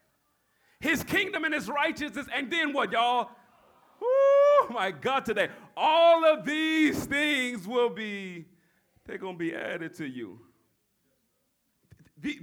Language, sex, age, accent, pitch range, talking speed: English, male, 30-49, American, 145-215 Hz, 130 wpm